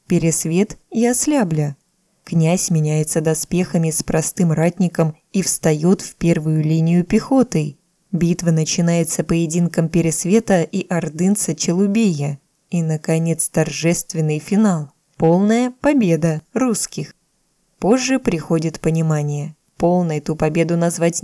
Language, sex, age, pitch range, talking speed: Russian, female, 20-39, 160-185 Hz, 100 wpm